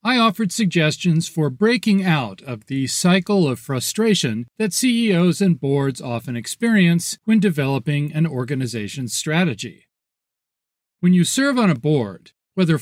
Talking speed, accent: 135 wpm, American